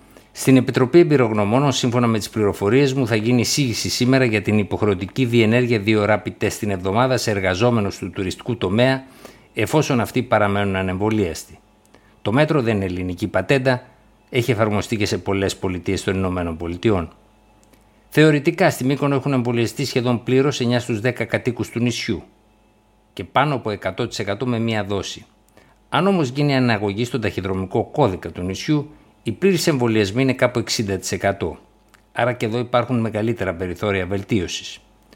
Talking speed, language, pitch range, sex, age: 145 wpm, Greek, 100-130 Hz, male, 60-79